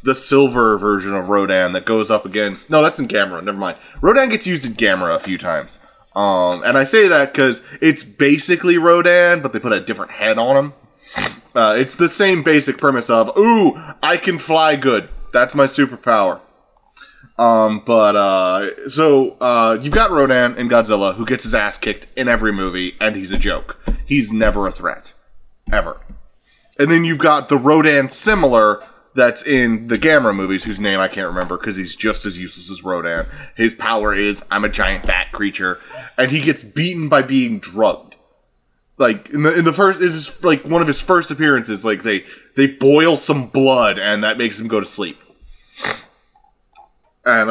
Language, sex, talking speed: English, male, 185 wpm